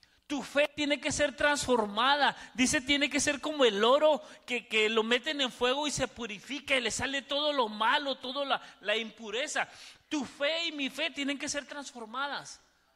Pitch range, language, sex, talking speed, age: 225-295 Hz, Spanish, male, 190 wpm, 40-59